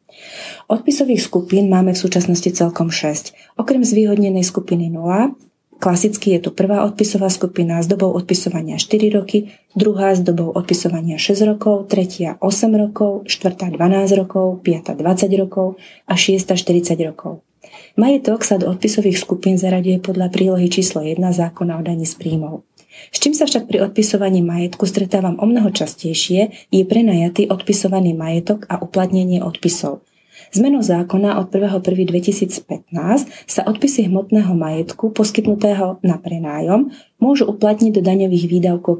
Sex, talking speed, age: female, 140 wpm, 30-49